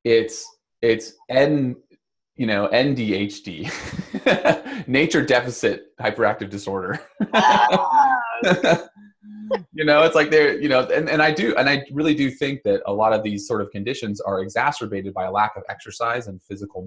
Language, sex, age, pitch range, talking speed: English, male, 20-39, 95-130 Hz, 155 wpm